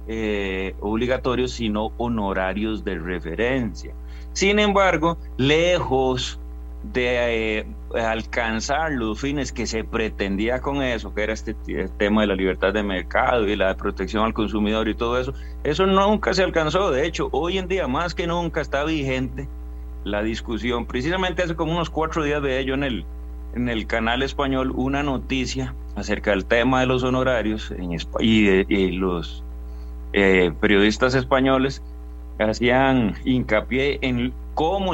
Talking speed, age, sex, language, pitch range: 150 wpm, 30-49, male, Spanish, 95-140 Hz